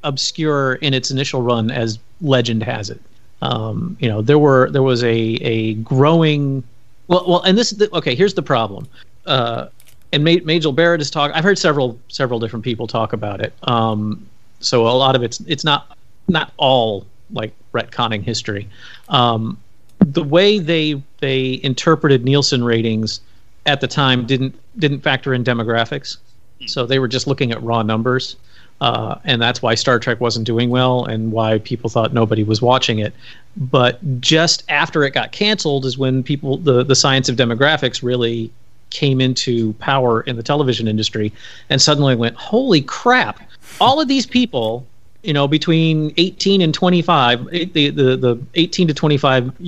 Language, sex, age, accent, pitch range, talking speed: English, male, 40-59, American, 115-145 Hz, 170 wpm